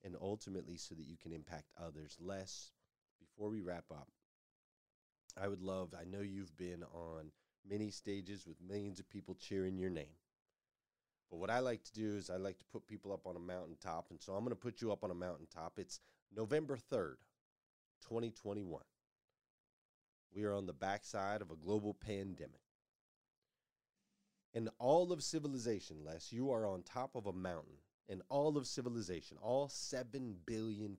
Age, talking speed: 30-49, 170 wpm